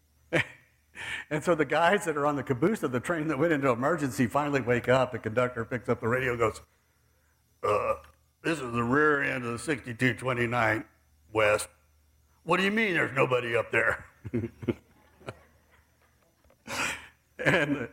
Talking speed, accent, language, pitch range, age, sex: 155 wpm, American, English, 105-150 Hz, 60-79, male